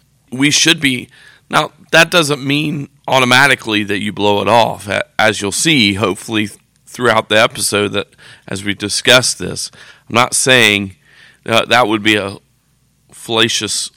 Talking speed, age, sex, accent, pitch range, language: 145 wpm, 40-59, male, American, 100-125 Hz, English